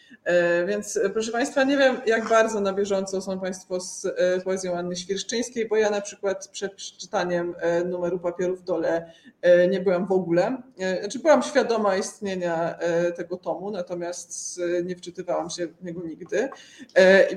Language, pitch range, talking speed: Polish, 180-210 Hz, 150 wpm